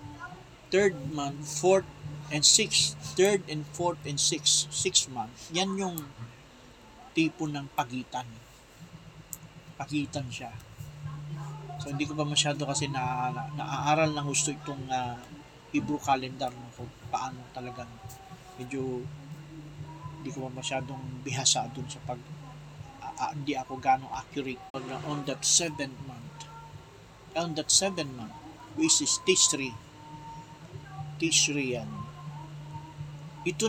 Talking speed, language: 125 wpm, Filipino